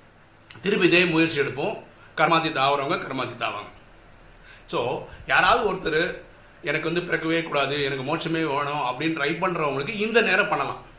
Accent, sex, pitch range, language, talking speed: native, male, 120-165 Hz, Tamil, 100 wpm